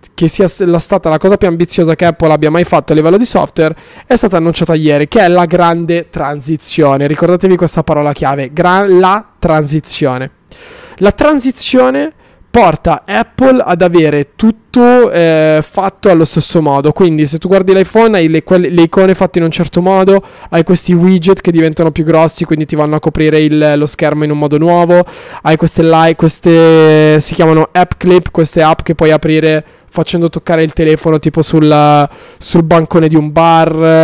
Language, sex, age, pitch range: Italian, male, 20-39, 155-180 Hz